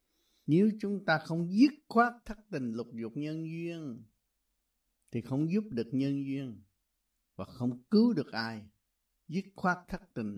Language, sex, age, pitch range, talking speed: Vietnamese, male, 60-79, 110-160 Hz, 155 wpm